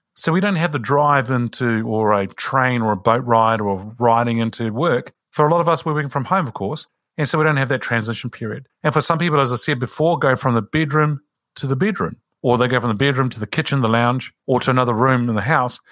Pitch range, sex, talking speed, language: 115-150 Hz, male, 265 wpm, English